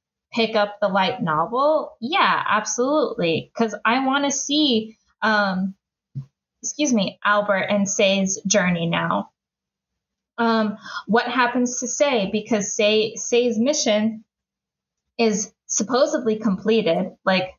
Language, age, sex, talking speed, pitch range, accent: English, 10-29, female, 105 wpm, 195-235 Hz, American